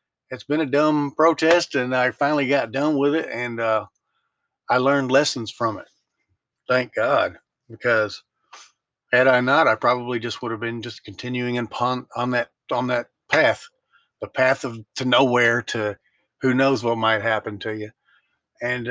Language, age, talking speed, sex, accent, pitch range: English, 50-69, 170 wpm, male, American, 110-130 Hz